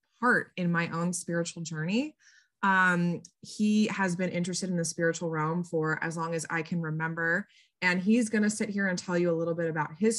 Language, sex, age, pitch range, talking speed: English, female, 20-39, 160-195 Hz, 210 wpm